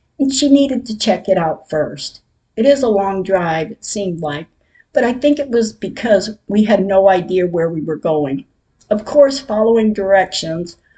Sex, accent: female, American